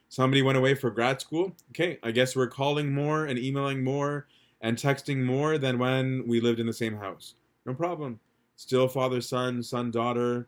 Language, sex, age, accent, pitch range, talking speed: English, male, 30-49, American, 115-130 Hz, 190 wpm